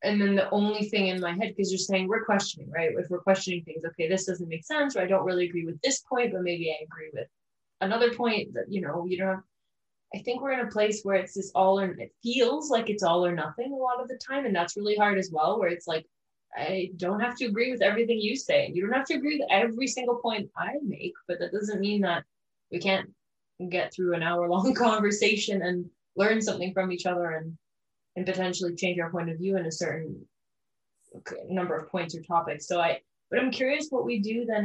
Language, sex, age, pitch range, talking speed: English, female, 20-39, 170-210 Hz, 240 wpm